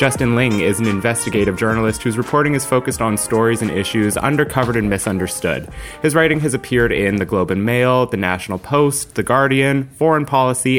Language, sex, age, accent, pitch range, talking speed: English, male, 30-49, American, 100-130 Hz, 185 wpm